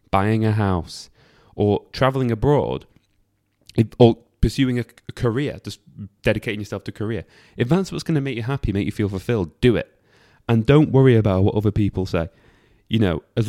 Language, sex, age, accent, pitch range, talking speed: English, male, 20-39, British, 95-125 Hz, 180 wpm